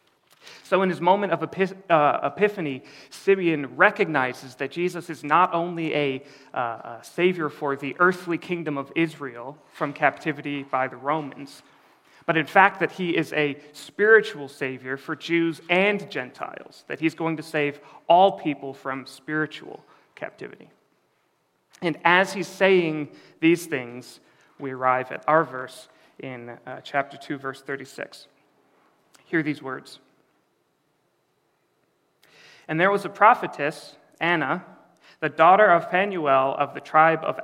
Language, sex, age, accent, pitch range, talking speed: English, male, 30-49, American, 140-175 Hz, 140 wpm